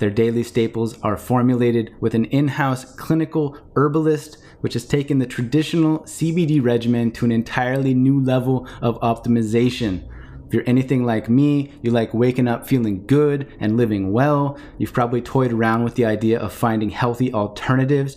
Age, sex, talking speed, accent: 30-49, male, 160 wpm, American